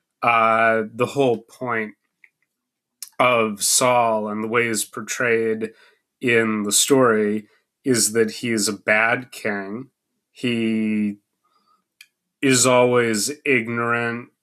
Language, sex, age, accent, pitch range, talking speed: English, male, 30-49, American, 110-125 Hz, 105 wpm